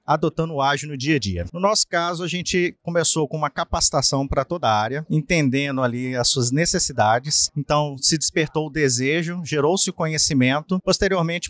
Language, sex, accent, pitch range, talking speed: Portuguese, male, Brazilian, 140-180 Hz, 175 wpm